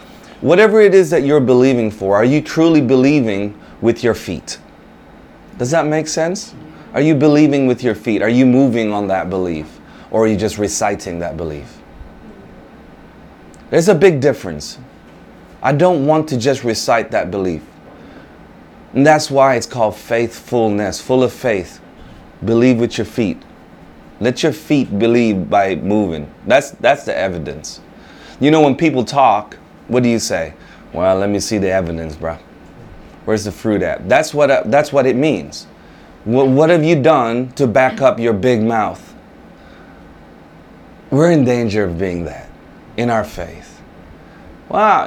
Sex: male